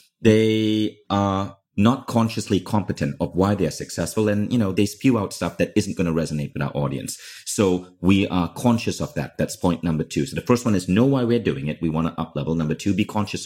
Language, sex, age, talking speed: English, male, 30-49, 235 wpm